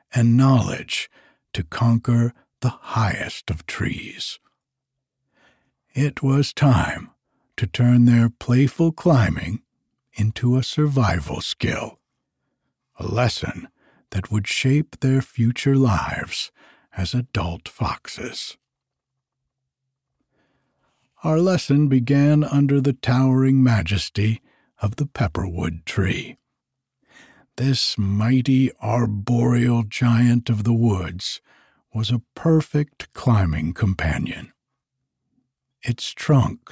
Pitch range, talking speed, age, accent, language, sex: 115-135 Hz, 90 wpm, 60-79, American, English, male